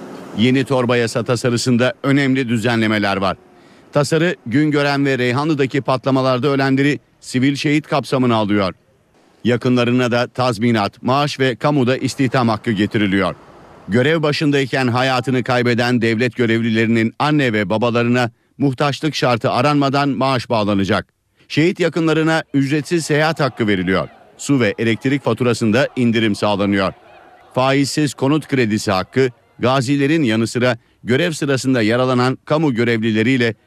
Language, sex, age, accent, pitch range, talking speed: Turkish, male, 50-69, native, 120-140 Hz, 110 wpm